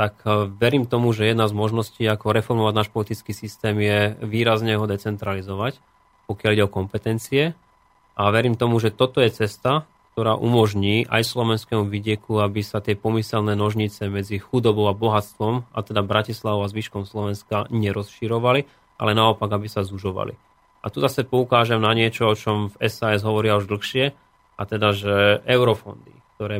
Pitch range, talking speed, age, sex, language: 105-115 Hz, 160 wpm, 30-49, male, Slovak